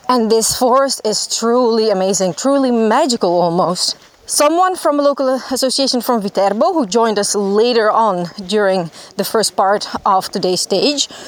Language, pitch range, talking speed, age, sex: Italian, 200-255 Hz, 150 wpm, 30-49, female